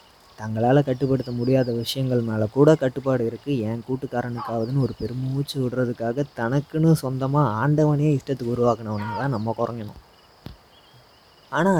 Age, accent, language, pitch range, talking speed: 20-39, native, Tamil, 110-130 Hz, 110 wpm